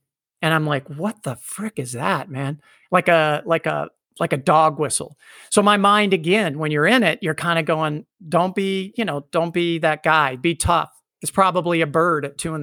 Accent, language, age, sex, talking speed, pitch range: American, English, 50-69, male, 220 wpm, 150-195 Hz